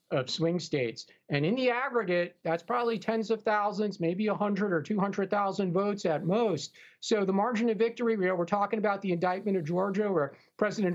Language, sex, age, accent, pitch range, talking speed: English, male, 50-69, American, 185-230 Hz, 190 wpm